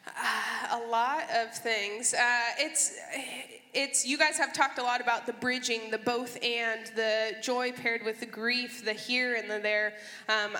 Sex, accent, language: female, American, English